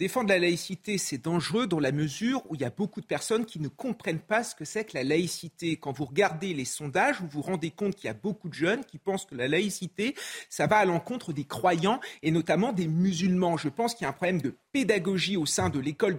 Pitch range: 165-215 Hz